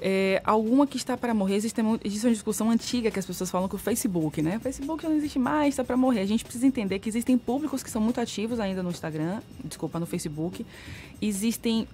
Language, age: Portuguese, 20-39